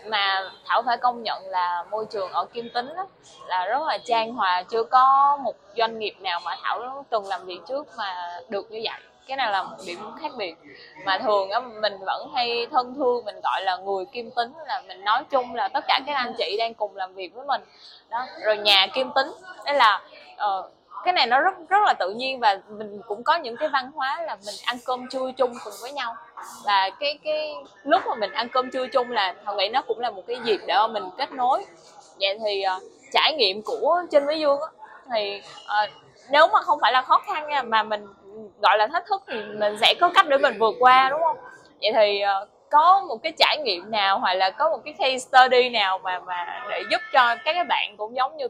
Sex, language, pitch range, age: female, Vietnamese, 210-300 Hz, 20-39